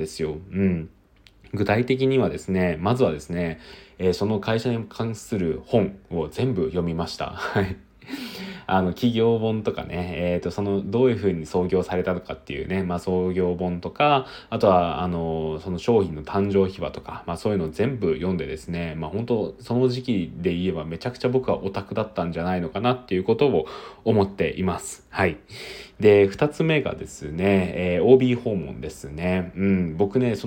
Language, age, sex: Japanese, 20-39, male